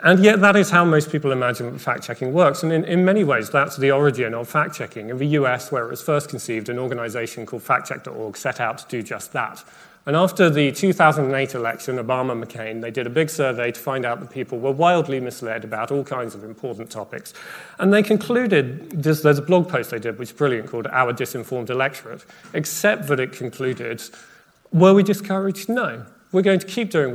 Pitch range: 120-160 Hz